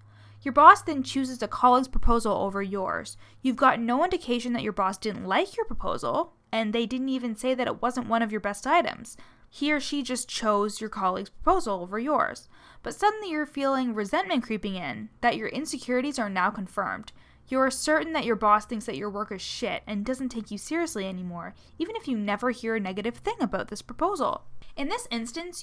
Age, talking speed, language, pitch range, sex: 10-29, 205 wpm, English, 210-300 Hz, female